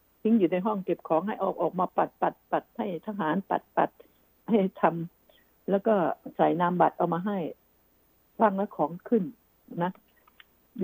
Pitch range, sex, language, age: 185-235 Hz, female, Thai, 60-79